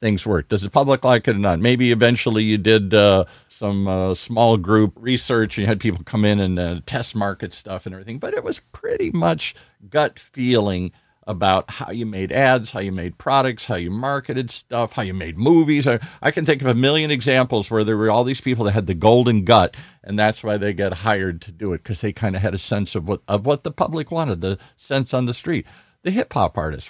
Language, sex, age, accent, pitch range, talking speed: English, male, 50-69, American, 100-130 Hz, 240 wpm